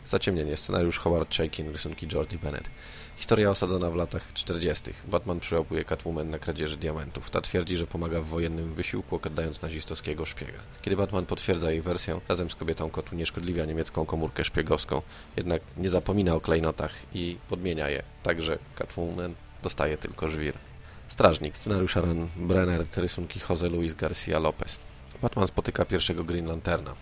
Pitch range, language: 80-90 Hz, Polish